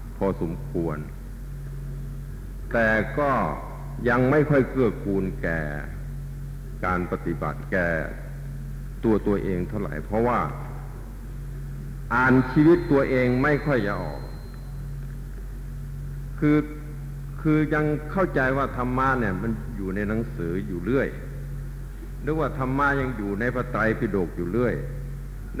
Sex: male